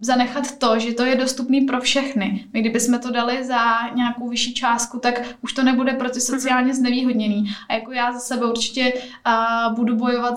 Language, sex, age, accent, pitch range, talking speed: Czech, female, 10-29, native, 235-255 Hz, 180 wpm